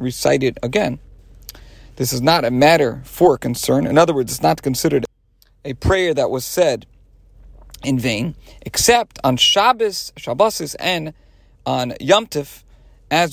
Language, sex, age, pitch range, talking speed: English, male, 40-59, 125-170 Hz, 145 wpm